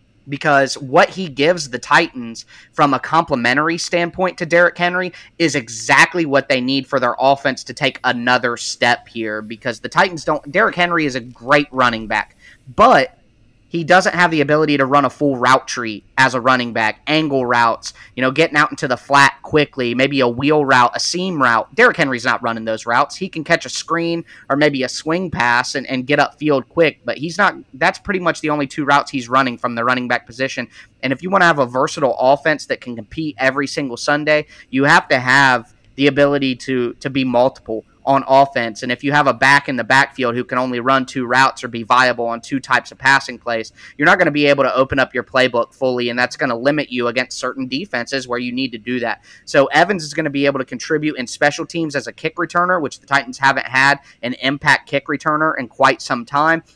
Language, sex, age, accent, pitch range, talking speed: English, male, 30-49, American, 125-150 Hz, 230 wpm